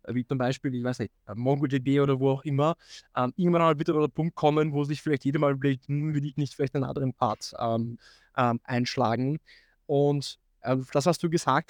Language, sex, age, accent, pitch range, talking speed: German, male, 20-39, German, 135-155 Hz, 195 wpm